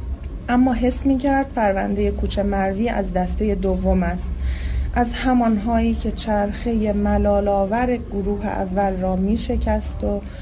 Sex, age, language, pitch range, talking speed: female, 30-49, Persian, 190-235 Hz, 115 wpm